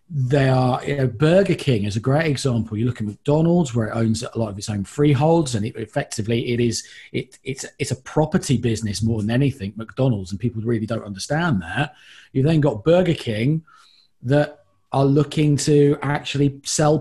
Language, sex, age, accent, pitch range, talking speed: English, male, 30-49, British, 125-155 Hz, 185 wpm